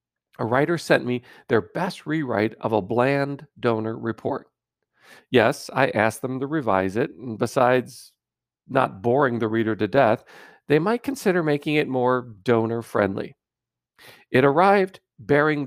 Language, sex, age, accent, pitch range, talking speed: English, male, 50-69, American, 120-160 Hz, 140 wpm